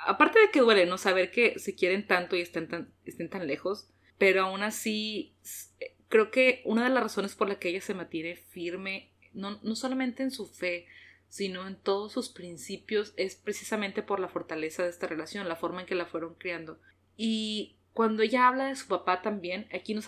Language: Spanish